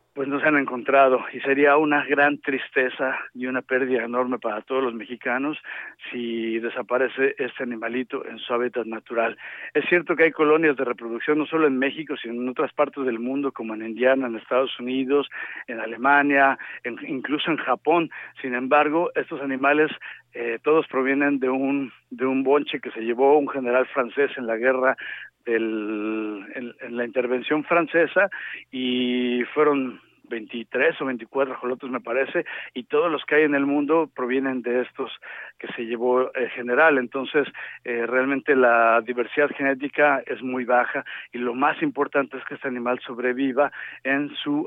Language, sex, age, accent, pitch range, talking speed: Spanish, male, 50-69, Mexican, 125-145 Hz, 170 wpm